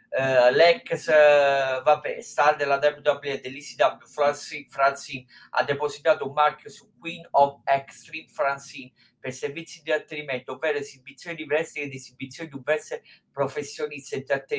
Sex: male